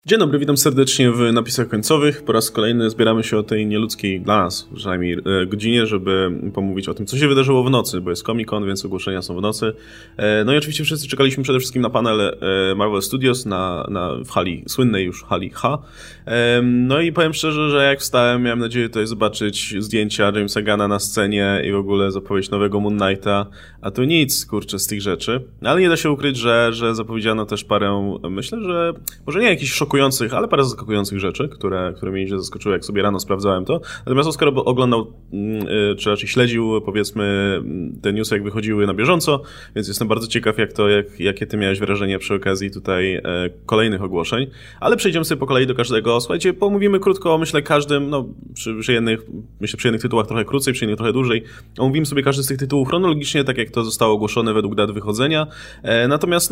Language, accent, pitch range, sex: Polish, native, 100-135 Hz, male